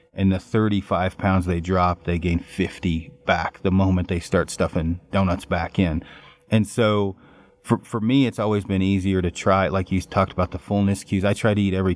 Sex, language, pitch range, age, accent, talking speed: male, English, 90-105 Hz, 30-49, American, 205 wpm